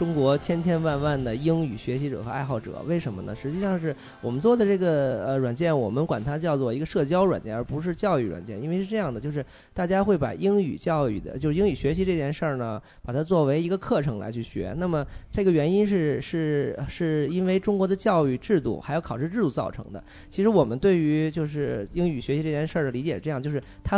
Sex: male